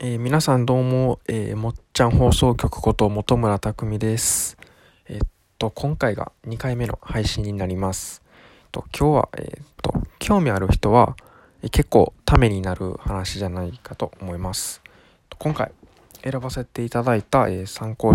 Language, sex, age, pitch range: Japanese, male, 20-39, 100-130 Hz